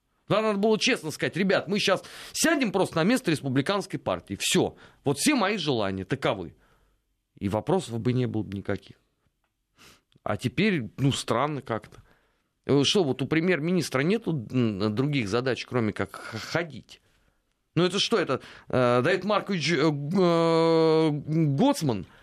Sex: male